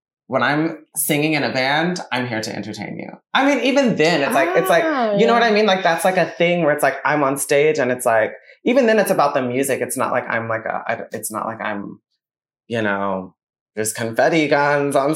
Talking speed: 240 wpm